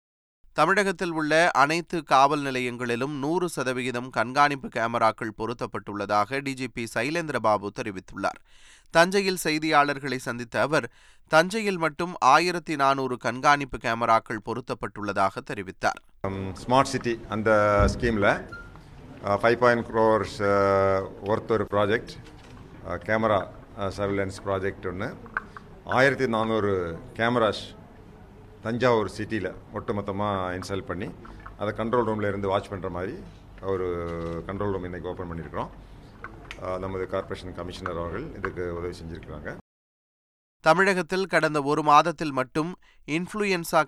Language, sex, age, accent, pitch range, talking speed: Tamil, male, 30-49, native, 100-140 Hz, 95 wpm